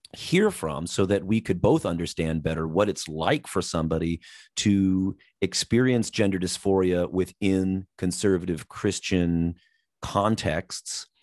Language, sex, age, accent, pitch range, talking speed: English, male, 30-49, American, 85-110 Hz, 120 wpm